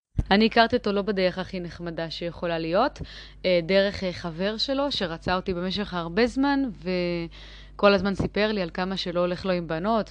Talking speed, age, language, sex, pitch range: 165 wpm, 20-39, Hebrew, female, 165-195 Hz